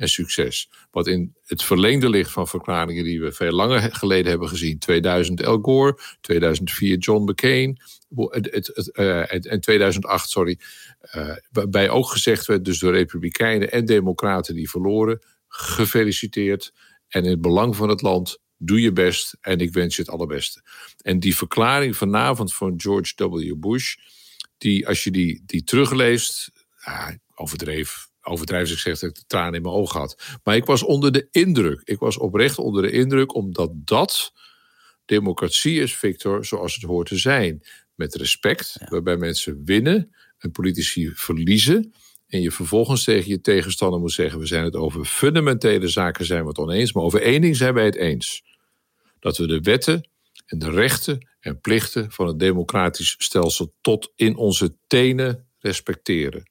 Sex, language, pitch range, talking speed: male, Dutch, 85-115 Hz, 160 wpm